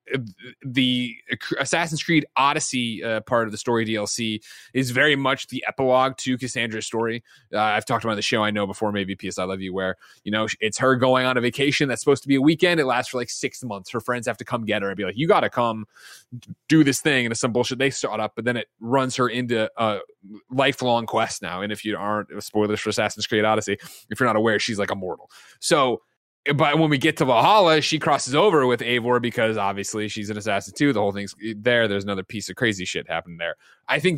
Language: English